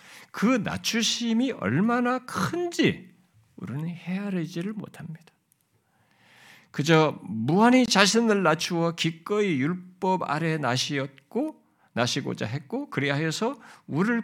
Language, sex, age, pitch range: Korean, male, 50-69, 160-235 Hz